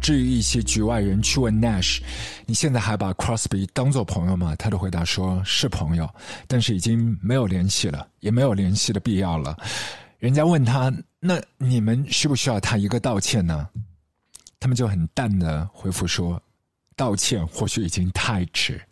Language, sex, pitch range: Chinese, male, 95-125 Hz